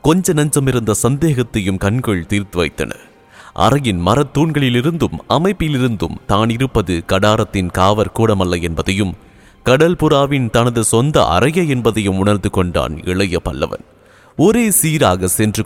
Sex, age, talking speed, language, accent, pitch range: male, 30-49, 125 wpm, English, Indian, 95-130 Hz